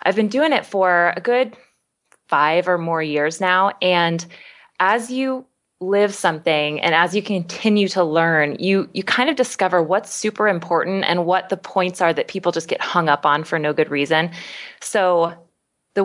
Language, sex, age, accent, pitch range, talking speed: English, female, 20-39, American, 165-200 Hz, 185 wpm